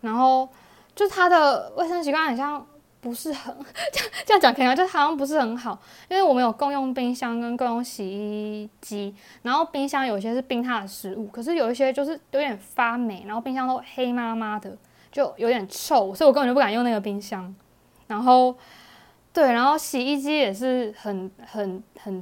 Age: 20-39